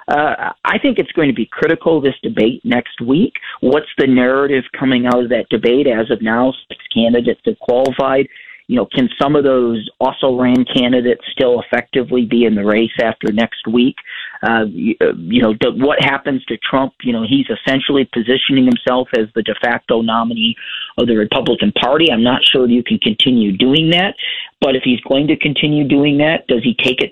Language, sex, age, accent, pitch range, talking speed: English, male, 40-59, American, 120-160 Hz, 195 wpm